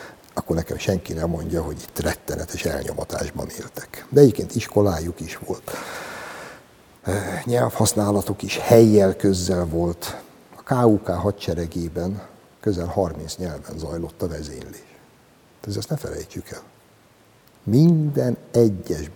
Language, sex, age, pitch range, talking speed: Hungarian, male, 60-79, 85-115 Hz, 110 wpm